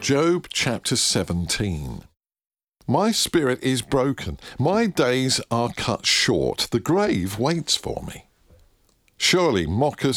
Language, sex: English, male